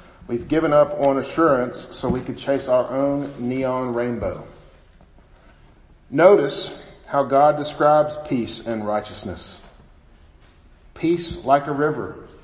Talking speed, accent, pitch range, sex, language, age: 115 wpm, American, 125-160 Hz, male, English, 40-59